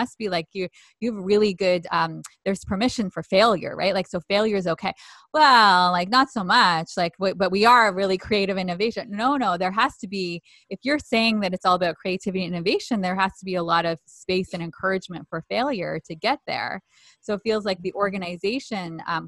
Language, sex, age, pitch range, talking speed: English, female, 20-39, 185-230 Hz, 210 wpm